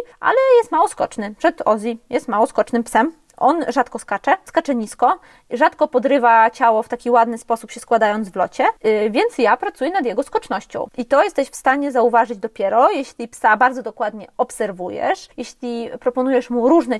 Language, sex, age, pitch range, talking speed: Polish, female, 20-39, 230-290 Hz, 175 wpm